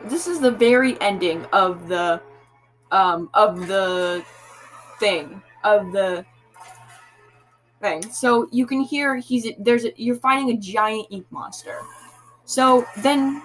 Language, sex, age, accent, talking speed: English, female, 10-29, American, 130 wpm